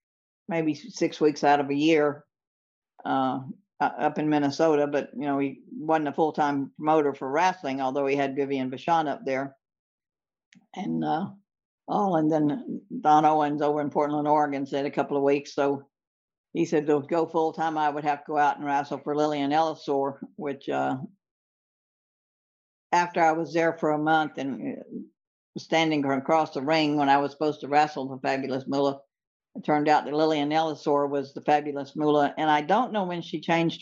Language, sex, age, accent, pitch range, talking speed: English, female, 60-79, American, 140-155 Hz, 185 wpm